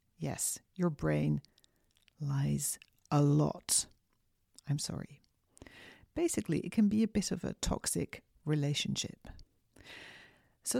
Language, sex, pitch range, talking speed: English, female, 140-205 Hz, 105 wpm